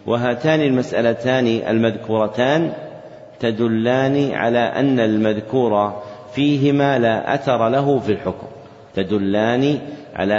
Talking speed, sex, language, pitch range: 85 wpm, male, Arabic, 110-135 Hz